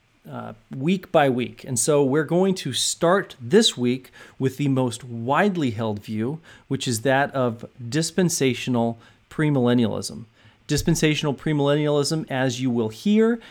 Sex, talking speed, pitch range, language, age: male, 135 wpm, 120-155 Hz, English, 40-59